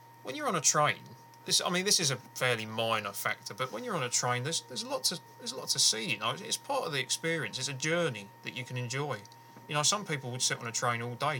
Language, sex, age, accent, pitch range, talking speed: English, male, 30-49, British, 115-130 Hz, 280 wpm